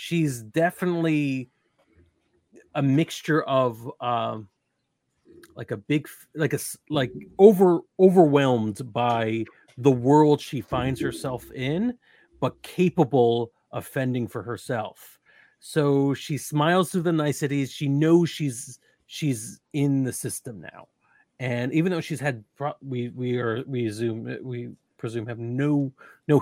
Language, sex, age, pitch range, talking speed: English, male, 30-49, 120-145 Hz, 125 wpm